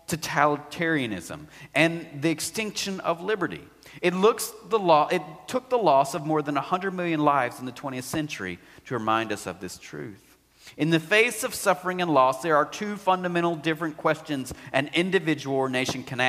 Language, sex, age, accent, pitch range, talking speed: English, male, 40-59, American, 130-170 Hz, 175 wpm